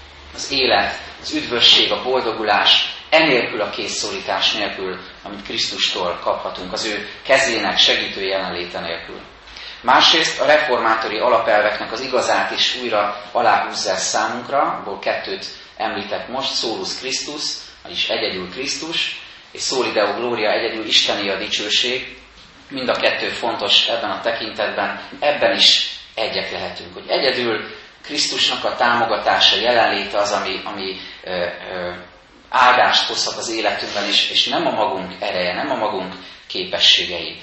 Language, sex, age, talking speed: Hungarian, male, 30-49, 135 wpm